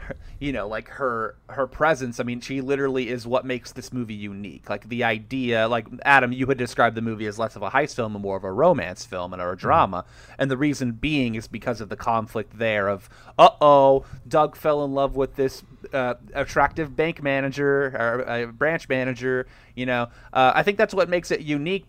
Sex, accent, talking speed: male, American, 215 wpm